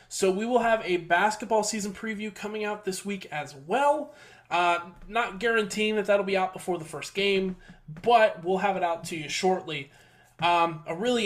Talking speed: 190 wpm